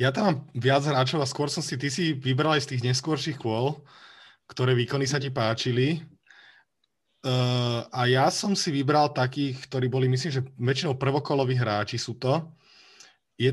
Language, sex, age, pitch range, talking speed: Slovak, male, 30-49, 110-130 Hz, 175 wpm